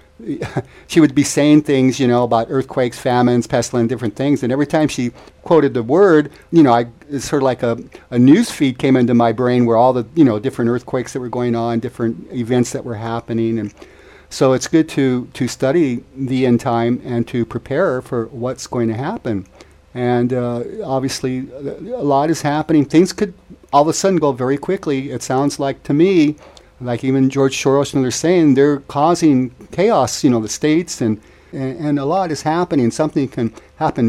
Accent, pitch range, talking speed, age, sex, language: American, 115-140 Hz, 195 wpm, 50-69, male, English